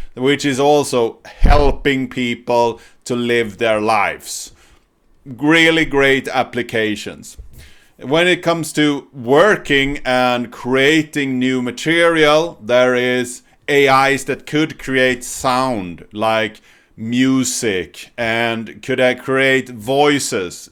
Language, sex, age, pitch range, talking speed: English, male, 30-49, 125-155 Hz, 100 wpm